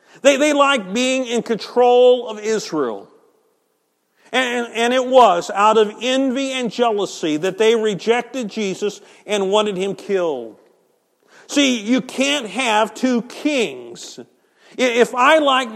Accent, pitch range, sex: American, 205-255 Hz, male